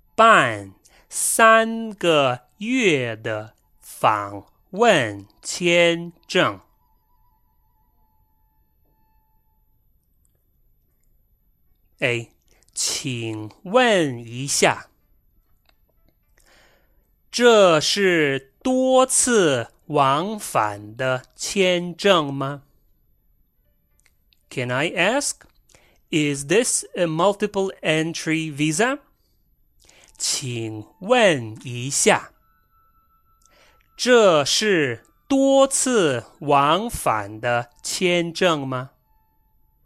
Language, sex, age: English, male, 30-49